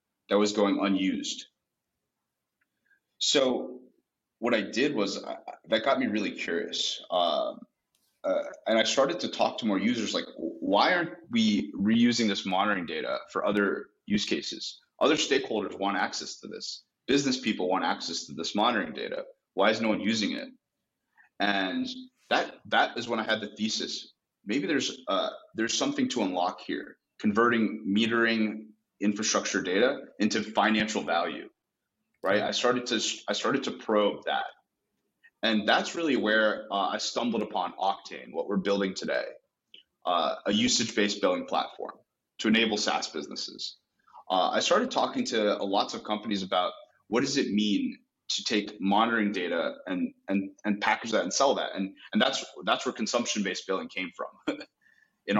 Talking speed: 160 wpm